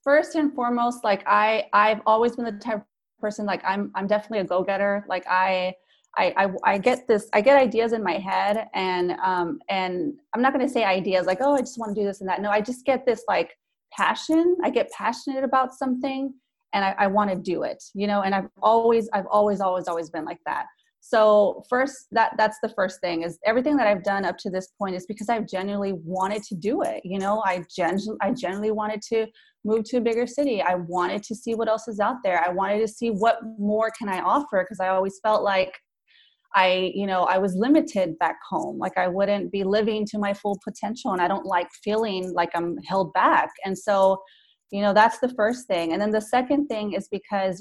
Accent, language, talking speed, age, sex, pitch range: American, English, 230 wpm, 30-49, female, 190-230 Hz